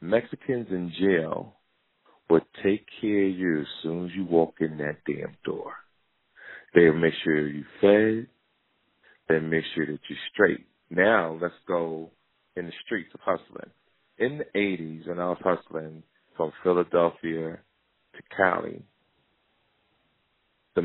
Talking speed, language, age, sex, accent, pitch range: 140 wpm, English, 40-59, male, American, 80-90 Hz